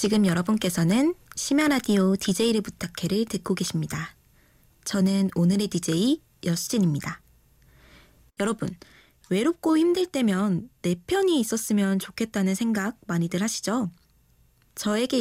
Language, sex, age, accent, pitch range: Korean, female, 20-39, native, 180-260 Hz